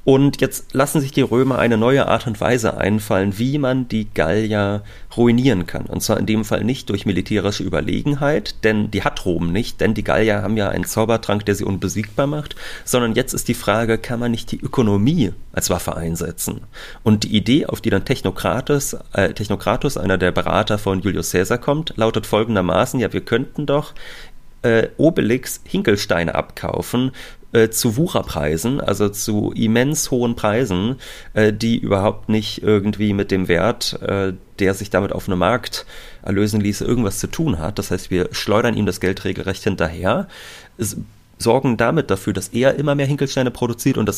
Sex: male